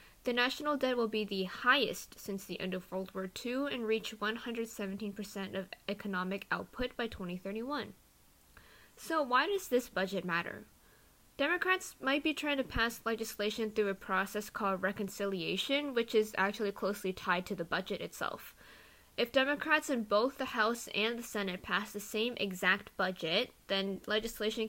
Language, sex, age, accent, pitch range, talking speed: English, female, 10-29, American, 195-250 Hz, 160 wpm